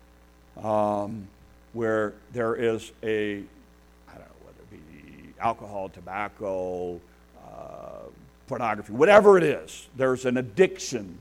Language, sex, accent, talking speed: English, male, American, 110 wpm